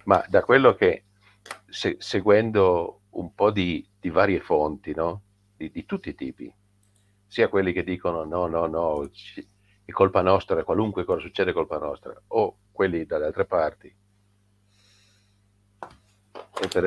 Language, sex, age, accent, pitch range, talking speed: Italian, male, 50-69, native, 90-100 Hz, 135 wpm